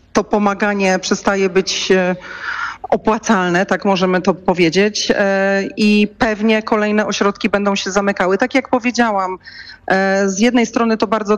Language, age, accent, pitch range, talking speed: Polish, 40-59, native, 185-215 Hz, 125 wpm